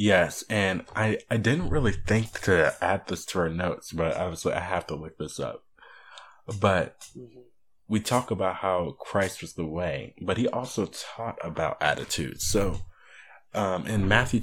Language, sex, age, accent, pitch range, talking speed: English, male, 20-39, American, 85-110 Hz, 170 wpm